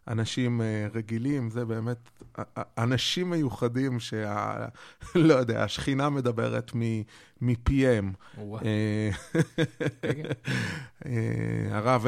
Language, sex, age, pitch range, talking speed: Hebrew, male, 20-39, 115-145 Hz, 65 wpm